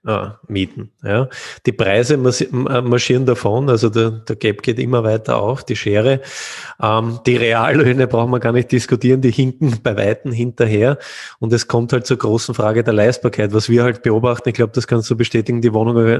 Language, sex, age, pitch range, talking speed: German, male, 20-39, 110-125 Hz, 190 wpm